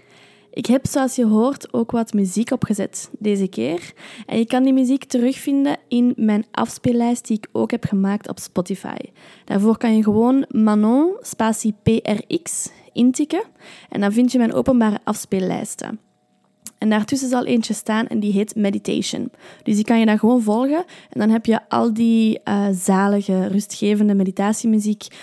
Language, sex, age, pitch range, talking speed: Dutch, female, 20-39, 205-245 Hz, 160 wpm